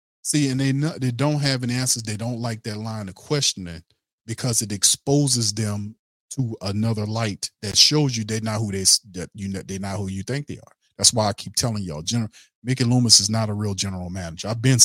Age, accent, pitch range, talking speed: 40-59, American, 100-125 Hz, 215 wpm